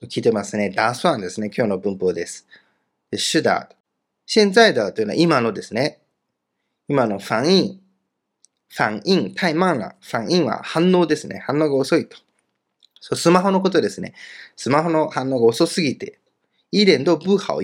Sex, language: male, Japanese